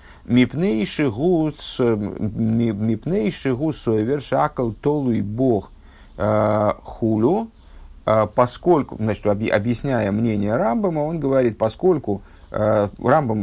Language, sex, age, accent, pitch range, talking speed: Russian, male, 50-69, native, 105-130 Hz, 60 wpm